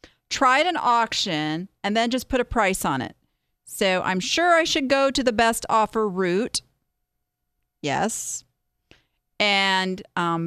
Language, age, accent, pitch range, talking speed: English, 40-59, American, 195-285 Hz, 145 wpm